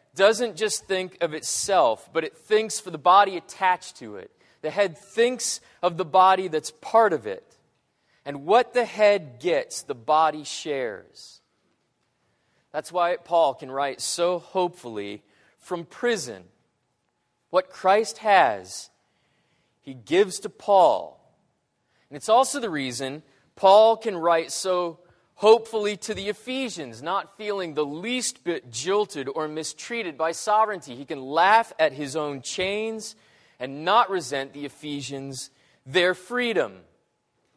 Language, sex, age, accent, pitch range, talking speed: English, male, 30-49, American, 155-210 Hz, 135 wpm